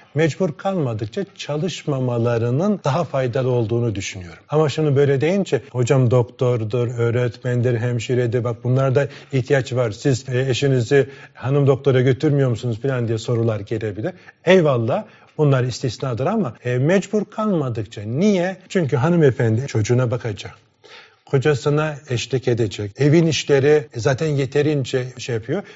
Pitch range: 125-160 Hz